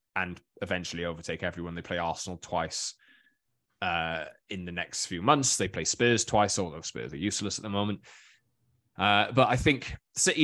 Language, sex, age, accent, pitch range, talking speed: English, male, 20-39, British, 90-120 Hz, 170 wpm